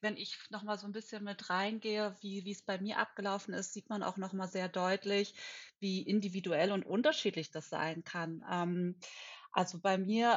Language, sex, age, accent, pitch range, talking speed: German, female, 30-49, German, 190-220 Hz, 190 wpm